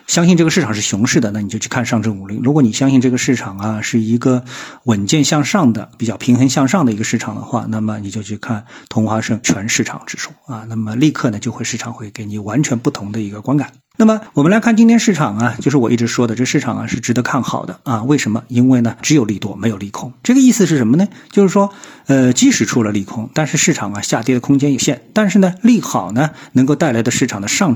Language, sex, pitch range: Chinese, male, 110-150 Hz